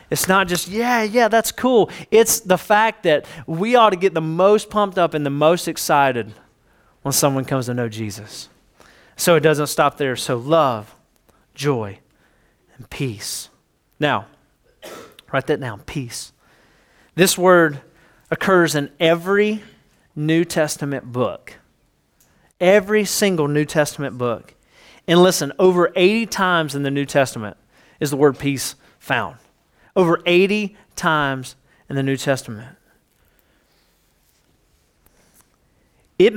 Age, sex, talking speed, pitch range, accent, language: 30-49, male, 130 wpm, 135-185 Hz, American, English